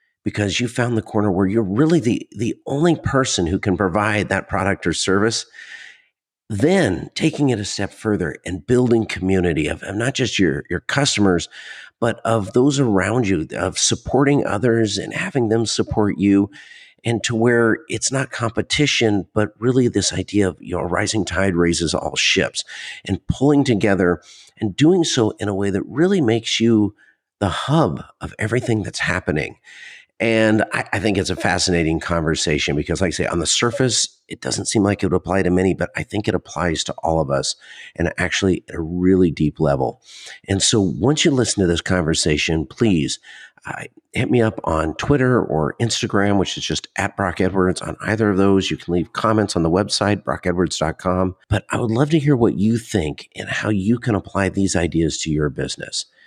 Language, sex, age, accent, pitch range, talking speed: English, male, 50-69, American, 90-115 Hz, 190 wpm